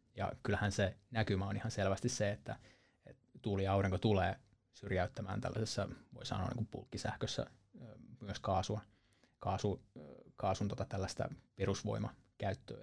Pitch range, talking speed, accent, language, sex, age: 95-115 Hz, 125 wpm, native, Finnish, male, 20-39